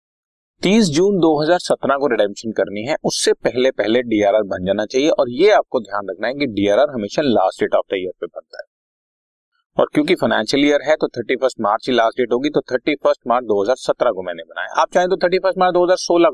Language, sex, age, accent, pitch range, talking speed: Hindi, male, 30-49, native, 105-175 Hz, 210 wpm